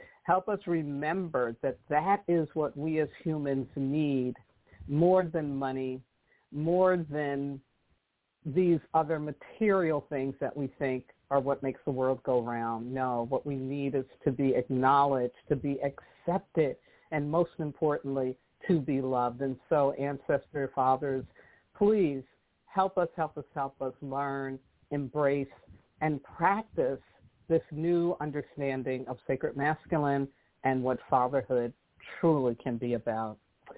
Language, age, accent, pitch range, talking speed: English, 50-69, American, 130-155 Hz, 135 wpm